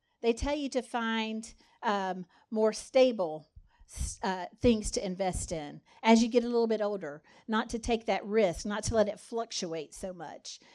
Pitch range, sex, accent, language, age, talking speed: 210-270 Hz, female, American, English, 50-69, 180 wpm